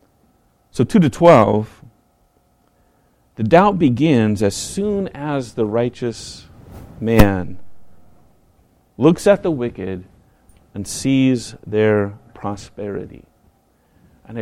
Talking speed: 90 wpm